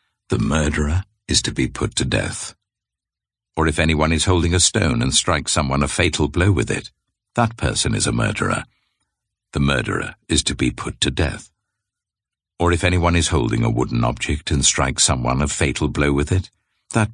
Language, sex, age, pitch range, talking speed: English, male, 60-79, 80-110 Hz, 185 wpm